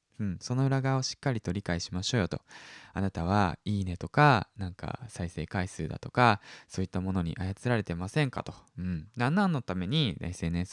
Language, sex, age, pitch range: Japanese, male, 20-39, 90-145 Hz